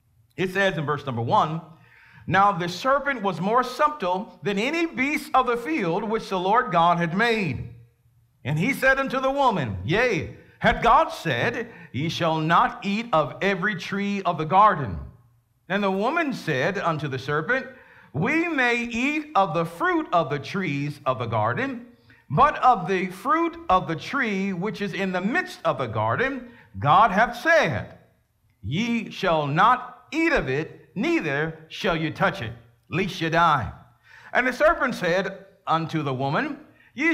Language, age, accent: English, 50-69, American